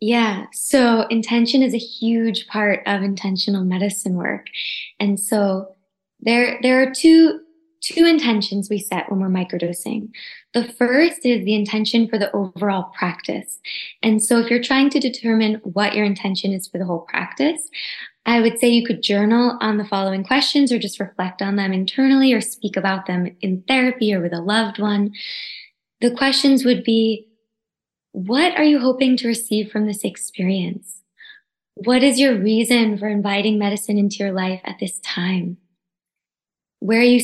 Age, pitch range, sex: 20-39, 200-245 Hz, female